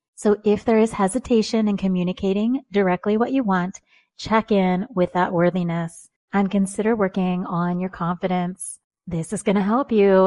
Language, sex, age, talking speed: English, female, 30-49, 165 wpm